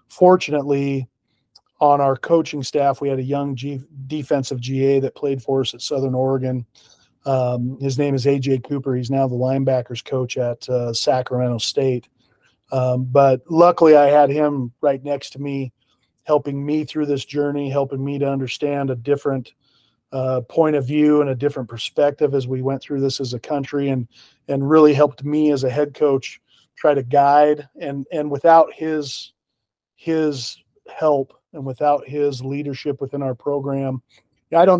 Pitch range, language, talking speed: 130-145 Hz, English, 165 wpm